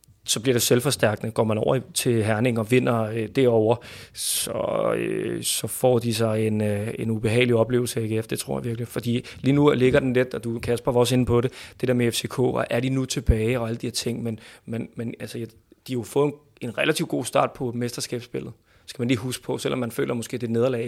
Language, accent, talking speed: Danish, native, 240 wpm